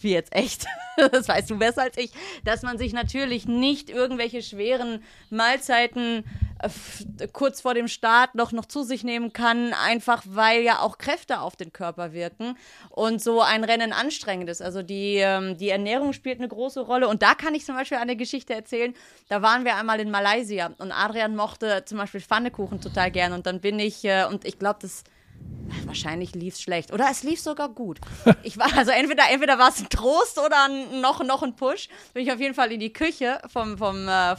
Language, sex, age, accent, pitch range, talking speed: German, female, 30-49, German, 205-255 Hz, 200 wpm